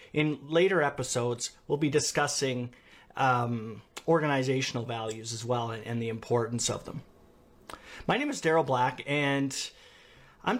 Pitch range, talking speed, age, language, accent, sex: 125-160 Hz, 135 wpm, 40-59, English, American, male